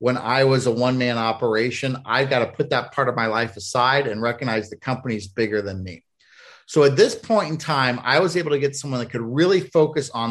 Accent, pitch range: American, 120-150 Hz